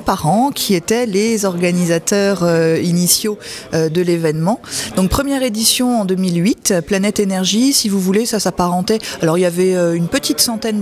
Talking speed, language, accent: 165 wpm, French, French